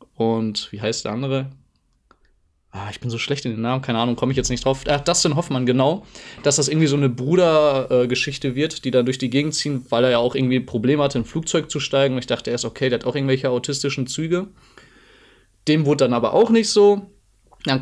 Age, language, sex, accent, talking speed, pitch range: 20-39, German, male, German, 230 wpm, 130-155 Hz